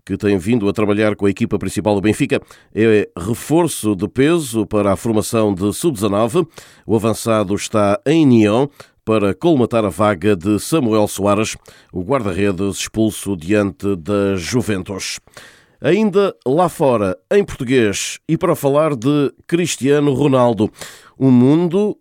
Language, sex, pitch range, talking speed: Portuguese, male, 100-125 Hz, 140 wpm